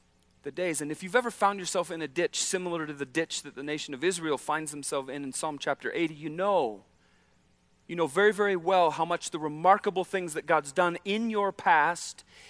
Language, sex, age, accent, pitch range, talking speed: English, male, 40-59, American, 150-190 Hz, 215 wpm